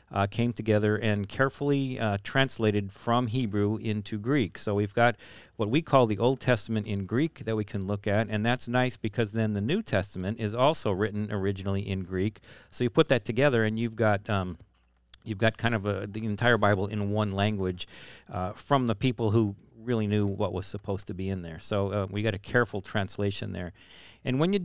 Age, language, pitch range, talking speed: 50-69, English, 100-125 Hz, 210 wpm